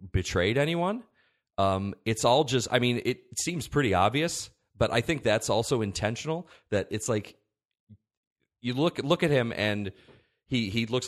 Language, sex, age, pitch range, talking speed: English, male, 30-49, 95-120 Hz, 160 wpm